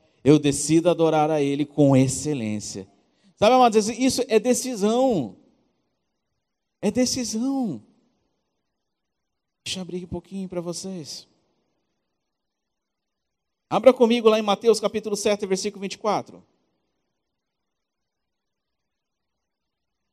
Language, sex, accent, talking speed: Portuguese, male, Brazilian, 90 wpm